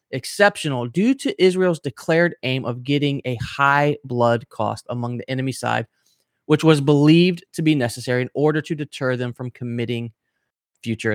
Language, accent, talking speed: English, American, 160 wpm